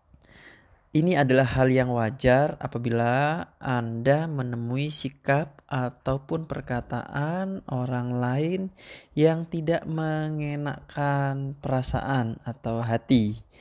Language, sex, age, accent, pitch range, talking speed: Indonesian, male, 20-39, native, 120-140 Hz, 85 wpm